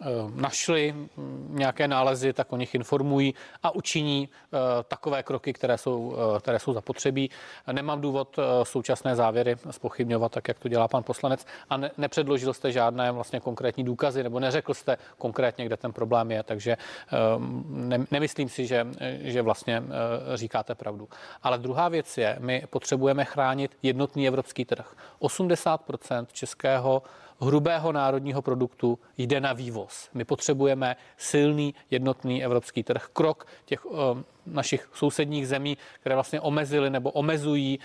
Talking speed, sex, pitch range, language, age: 135 wpm, male, 125-145 Hz, Czech, 30-49